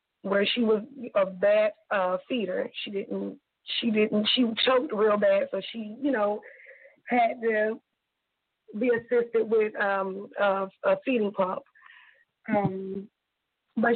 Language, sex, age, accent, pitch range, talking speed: English, female, 20-39, American, 210-260 Hz, 135 wpm